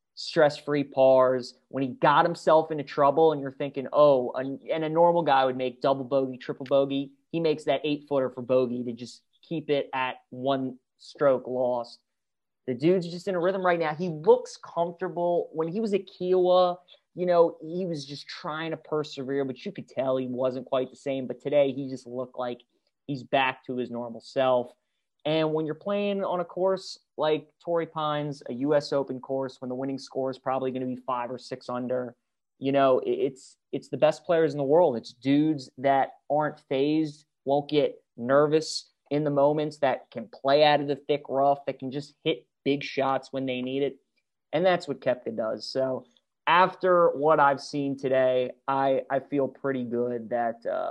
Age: 30-49